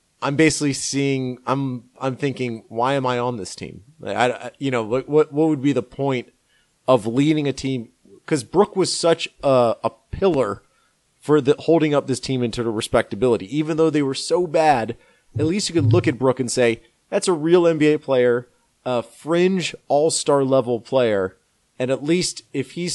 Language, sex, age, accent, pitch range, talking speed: English, male, 30-49, American, 115-145 Hz, 190 wpm